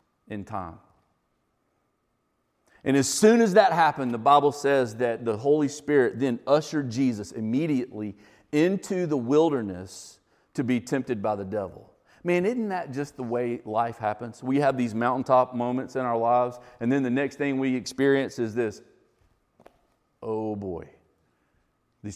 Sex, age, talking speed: male, 40-59, 150 wpm